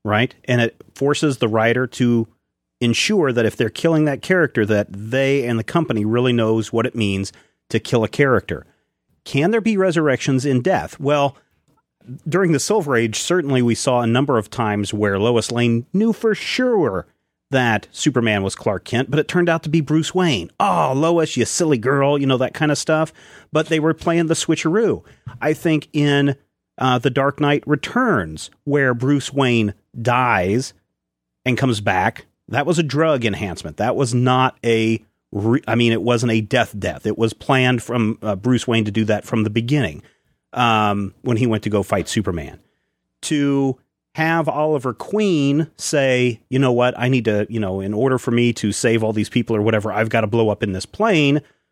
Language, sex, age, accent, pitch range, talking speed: English, male, 40-59, American, 110-145 Hz, 195 wpm